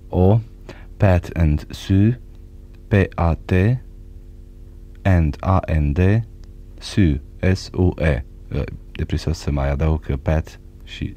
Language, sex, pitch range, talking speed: Romanian, male, 85-95 Hz, 85 wpm